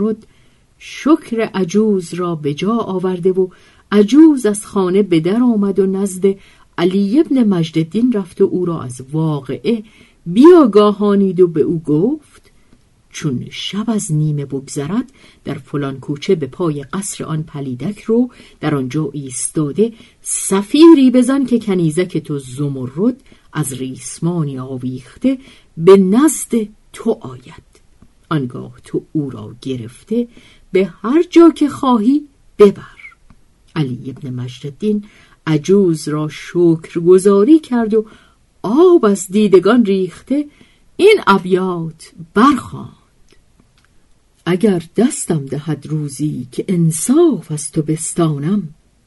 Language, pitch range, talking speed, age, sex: Persian, 150-215 Hz, 115 wpm, 50-69, female